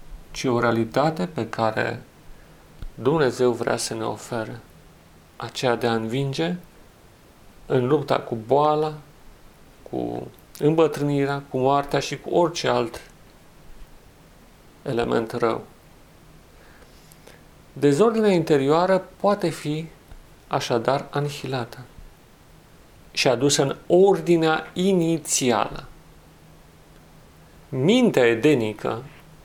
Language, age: Romanian, 40-59